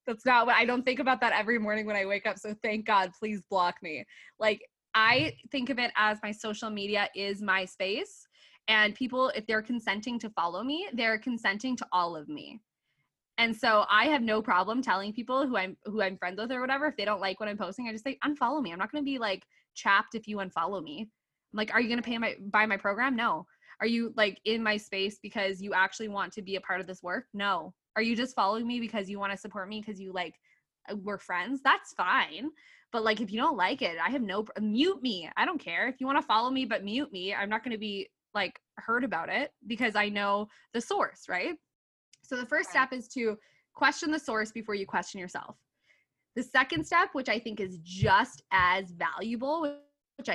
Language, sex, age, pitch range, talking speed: English, female, 20-39, 200-260 Hz, 235 wpm